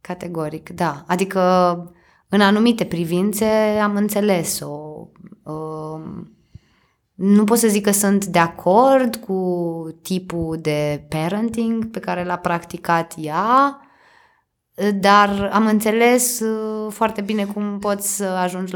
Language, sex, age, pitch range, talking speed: Romanian, female, 20-39, 175-225 Hz, 110 wpm